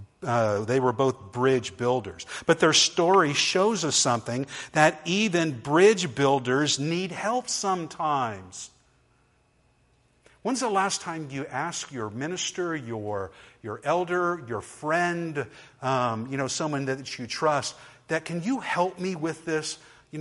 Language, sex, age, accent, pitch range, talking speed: English, male, 50-69, American, 120-160 Hz, 140 wpm